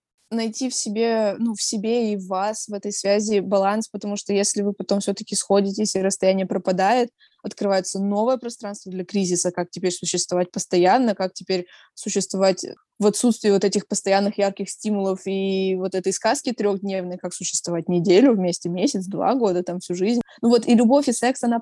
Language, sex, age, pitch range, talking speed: Russian, female, 20-39, 195-220 Hz, 180 wpm